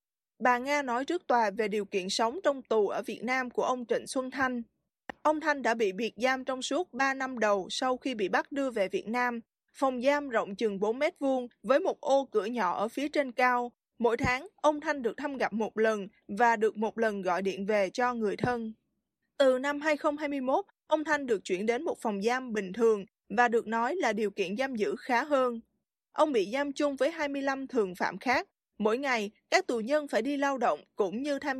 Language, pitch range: Vietnamese, 220-280 Hz